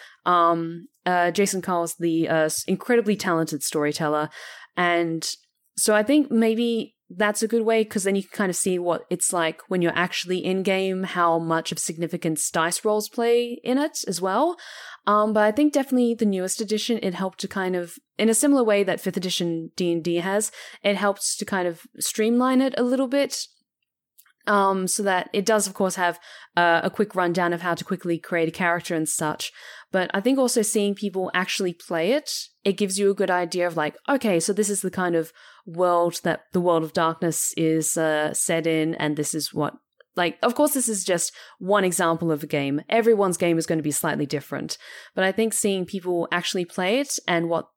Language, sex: English, female